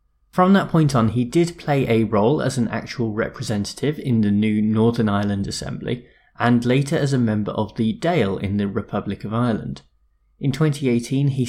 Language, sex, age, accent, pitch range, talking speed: English, male, 20-39, British, 110-140 Hz, 180 wpm